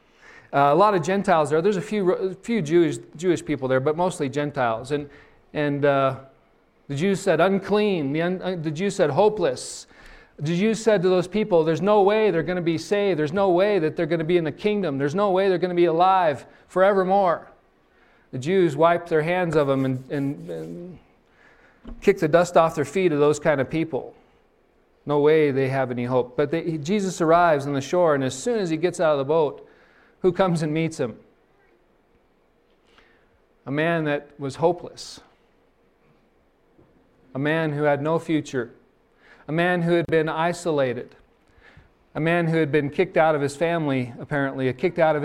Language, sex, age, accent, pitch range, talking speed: English, male, 40-59, American, 145-185 Hz, 190 wpm